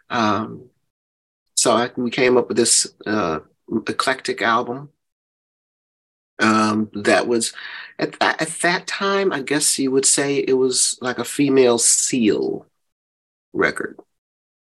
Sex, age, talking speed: male, 40-59, 125 wpm